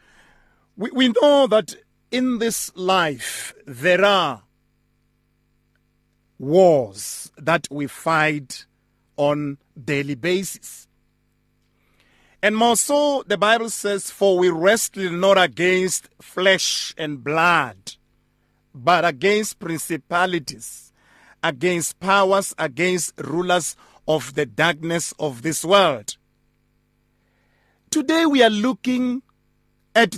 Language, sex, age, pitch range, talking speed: English, male, 50-69, 150-210 Hz, 95 wpm